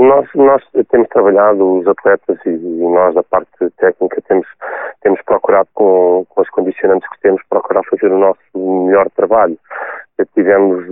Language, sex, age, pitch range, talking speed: Portuguese, male, 30-49, 90-110 Hz, 150 wpm